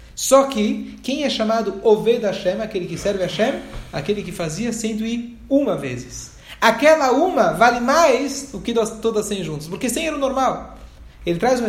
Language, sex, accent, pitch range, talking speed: Portuguese, male, Brazilian, 185-245 Hz, 185 wpm